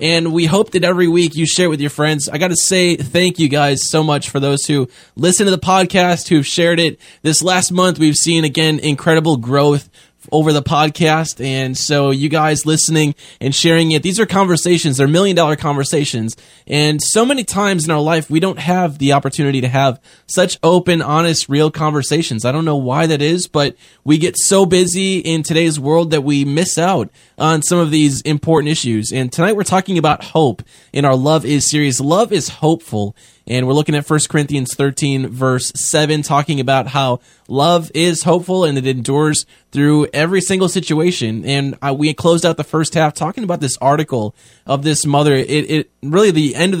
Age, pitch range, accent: 10-29, 140-165 Hz, American